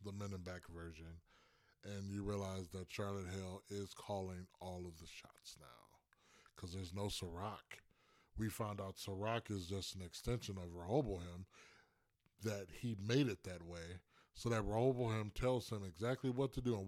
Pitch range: 95-120 Hz